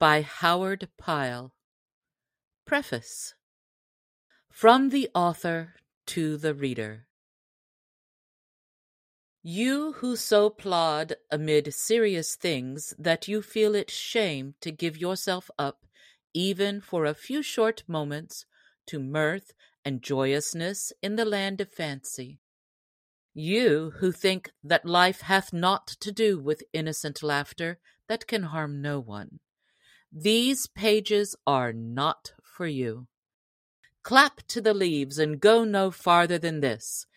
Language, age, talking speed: English, 50-69, 120 wpm